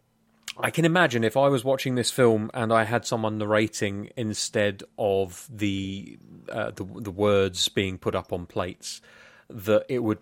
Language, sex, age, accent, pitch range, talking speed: English, male, 30-49, British, 100-120 Hz, 170 wpm